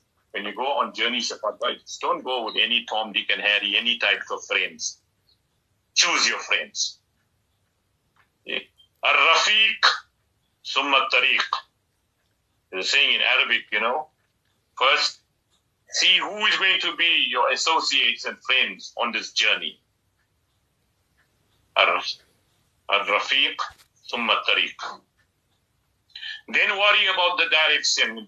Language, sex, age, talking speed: English, male, 50-69, 110 wpm